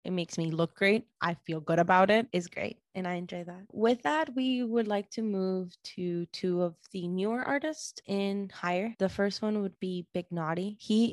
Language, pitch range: English, 180-225 Hz